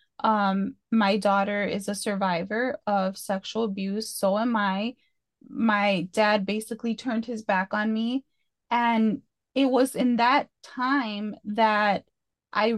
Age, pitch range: 20-39, 210-255 Hz